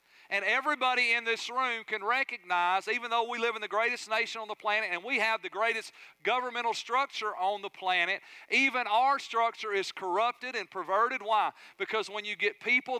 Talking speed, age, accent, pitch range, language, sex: 190 wpm, 40-59, American, 190-230 Hz, English, male